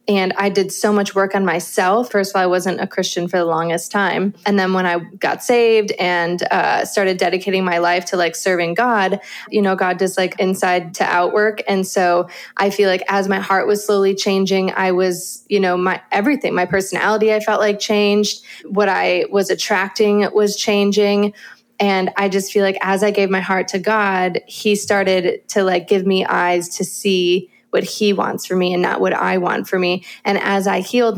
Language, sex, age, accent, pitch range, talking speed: English, female, 20-39, American, 185-205 Hz, 210 wpm